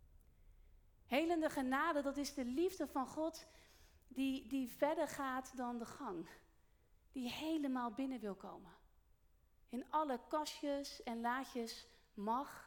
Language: Dutch